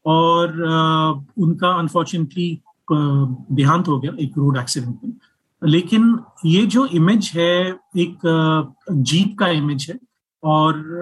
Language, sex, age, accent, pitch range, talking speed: Hindi, male, 30-49, native, 150-180 Hz, 115 wpm